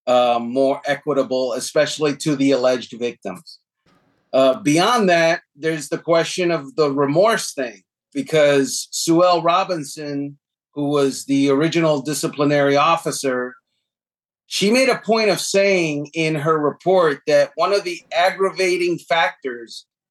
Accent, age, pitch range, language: American, 40-59, 140-180 Hz, English